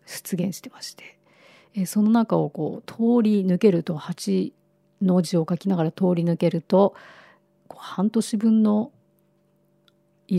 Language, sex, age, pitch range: Japanese, female, 50-69, 175-200 Hz